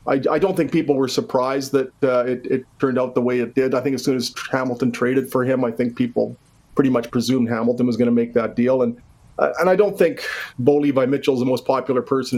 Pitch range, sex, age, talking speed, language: 130-160 Hz, male, 40-59, 255 wpm, English